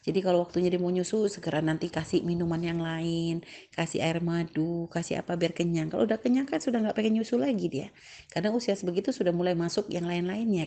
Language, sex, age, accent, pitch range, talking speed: Indonesian, female, 30-49, native, 165-200 Hz, 210 wpm